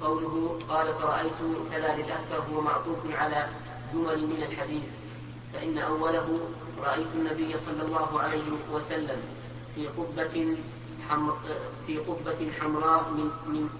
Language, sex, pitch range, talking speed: Arabic, female, 145-160 Hz, 110 wpm